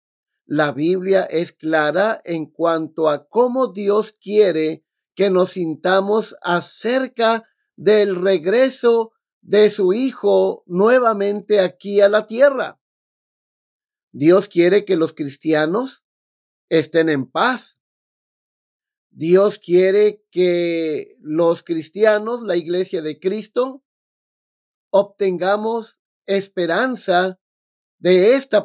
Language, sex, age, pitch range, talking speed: Spanish, male, 50-69, 175-215 Hz, 95 wpm